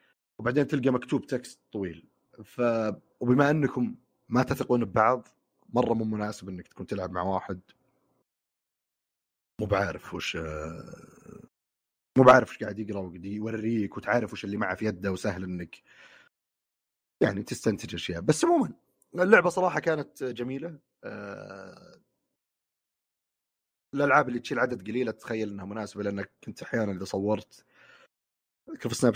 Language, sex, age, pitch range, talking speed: Arabic, male, 30-49, 95-125 Hz, 130 wpm